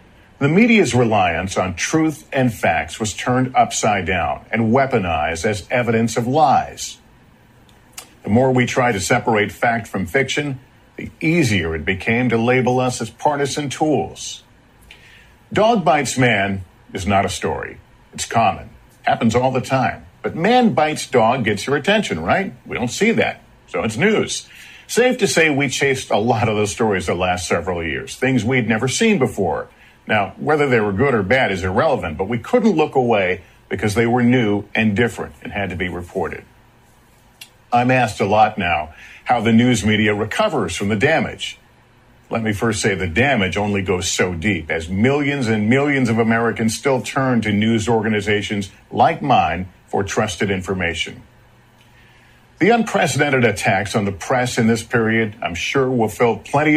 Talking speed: 170 wpm